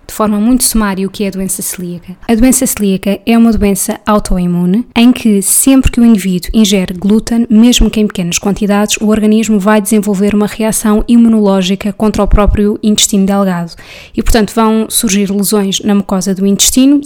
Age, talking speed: 20-39, 180 wpm